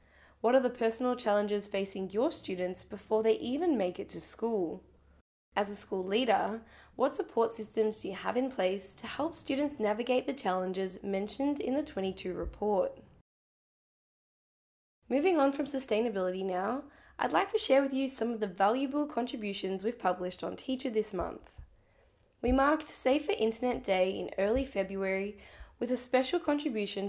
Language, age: English, 10-29